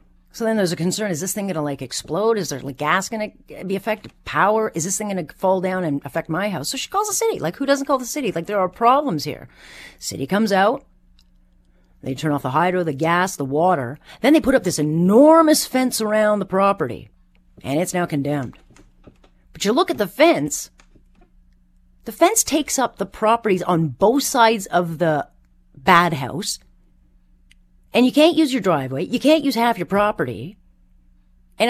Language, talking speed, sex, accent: English, 200 wpm, female, American